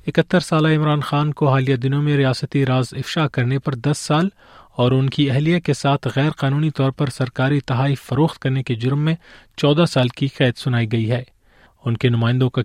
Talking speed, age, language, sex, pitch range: 205 wpm, 30-49, Urdu, male, 125-145 Hz